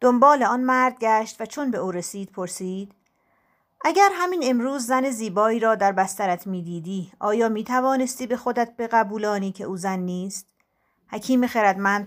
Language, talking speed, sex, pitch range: Persian, 160 wpm, female, 185-230 Hz